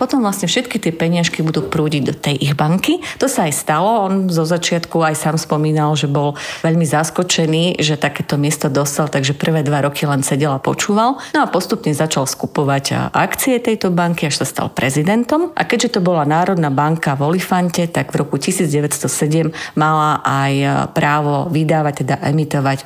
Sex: female